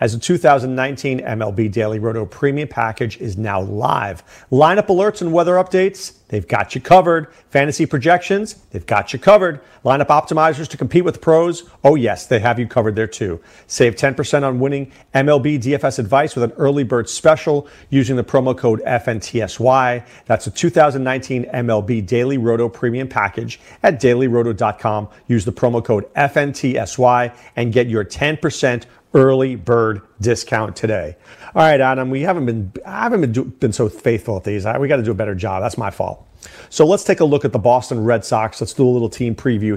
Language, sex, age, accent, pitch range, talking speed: English, male, 40-59, American, 115-145 Hz, 185 wpm